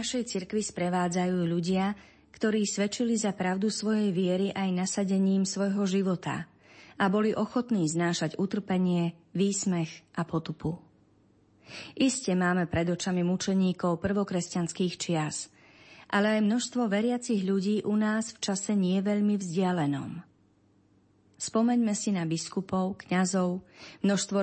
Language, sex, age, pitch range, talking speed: Slovak, female, 30-49, 165-200 Hz, 120 wpm